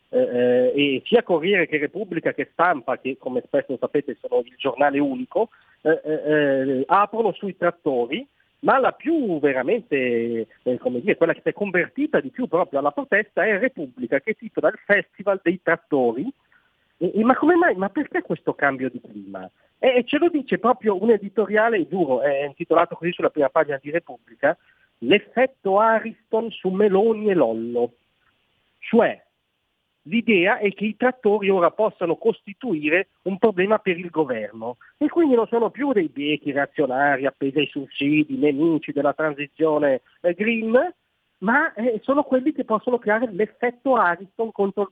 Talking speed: 160 wpm